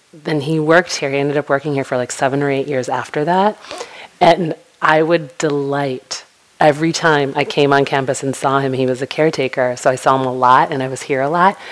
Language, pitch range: English, 135-155 Hz